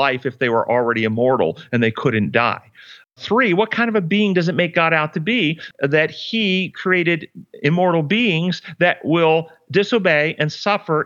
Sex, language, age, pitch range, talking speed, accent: male, English, 40-59, 120-170 Hz, 180 wpm, American